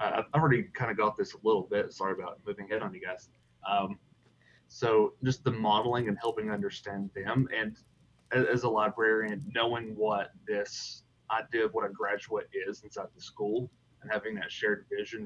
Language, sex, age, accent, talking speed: English, male, 30-49, American, 180 wpm